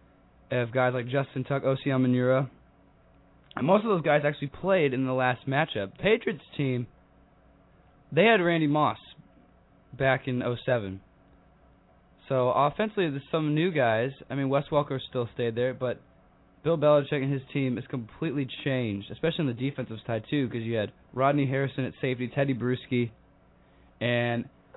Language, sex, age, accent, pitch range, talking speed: English, male, 20-39, American, 120-145 Hz, 155 wpm